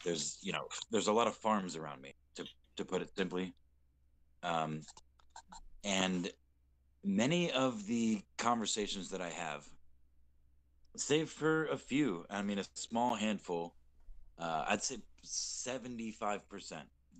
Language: English